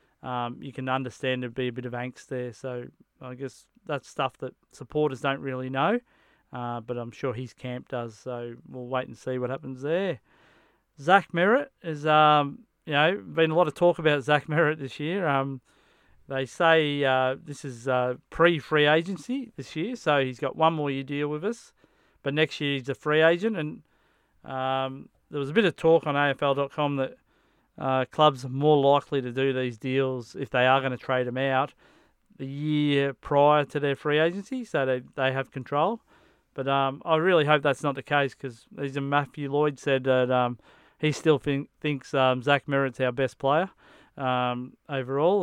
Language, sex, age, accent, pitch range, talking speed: English, male, 40-59, Australian, 130-155 Hz, 195 wpm